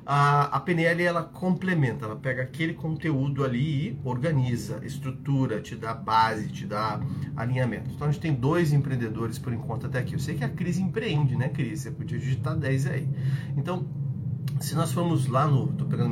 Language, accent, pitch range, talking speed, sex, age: Portuguese, Brazilian, 125-145 Hz, 185 wpm, male, 30-49